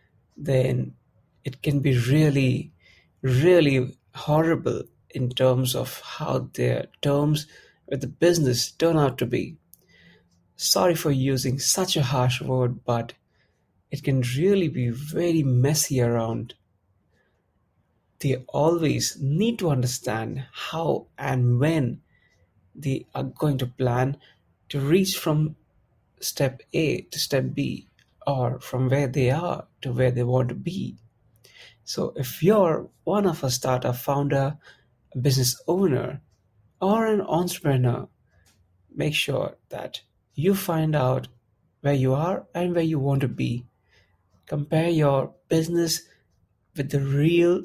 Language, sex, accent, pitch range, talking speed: English, male, Indian, 120-155 Hz, 130 wpm